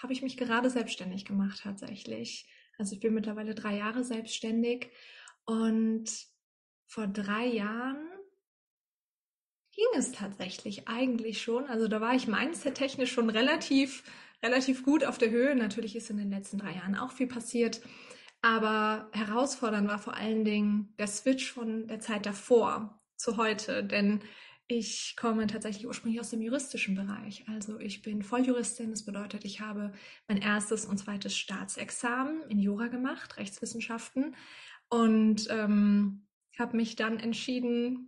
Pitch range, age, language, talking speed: 215-255 Hz, 20-39, German, 145 wpm